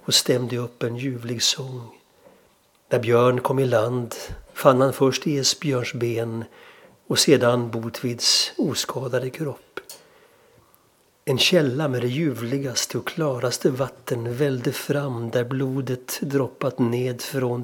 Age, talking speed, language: 60-79, 125 wpm, Swedish